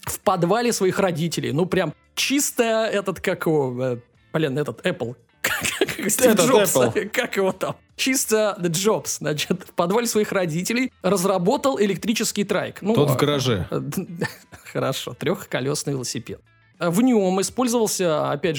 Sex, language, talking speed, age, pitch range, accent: male, Russian, 115 wpm, 20-39, 145-215 Hz, native